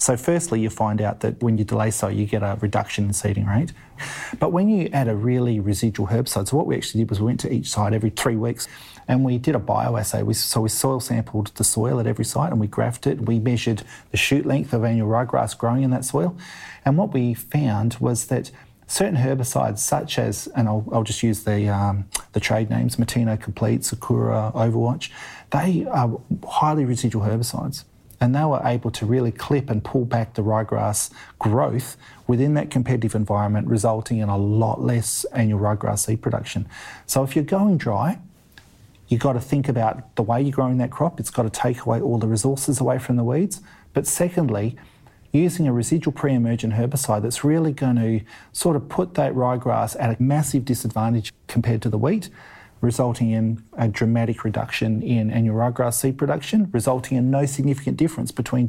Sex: male